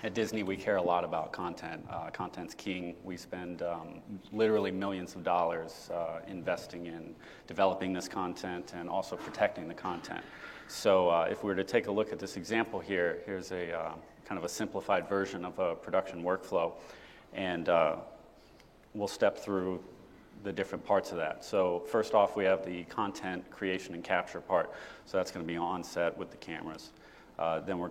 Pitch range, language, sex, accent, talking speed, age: 90-100 Hz, English, male, American, 185 wpm, 30-49